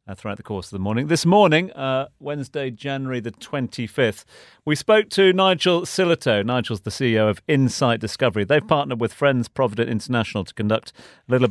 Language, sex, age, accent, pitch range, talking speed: English, male, 40-59, British, 105-150 Hz, 175 wpm